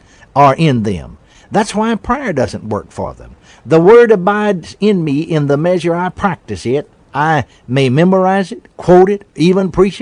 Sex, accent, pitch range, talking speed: male, American, 120-185 Hz, 175 wpm